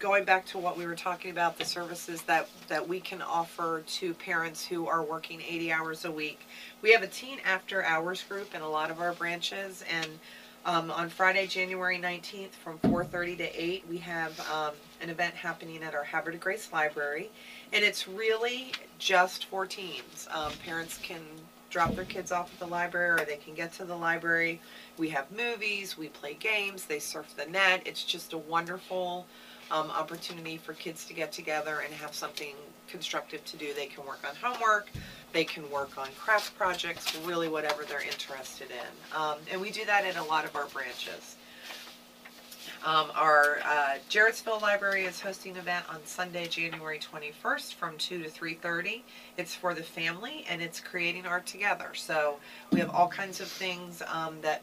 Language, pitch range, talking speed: English, 160-185 Hz, 185 wpm